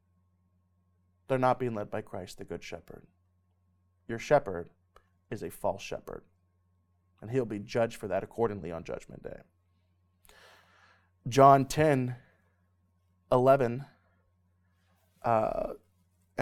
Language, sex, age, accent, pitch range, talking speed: English, male, 30-49, American, 90-140 Hz, 105 wpm